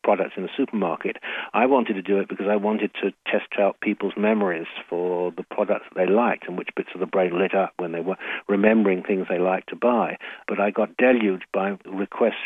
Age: 60-79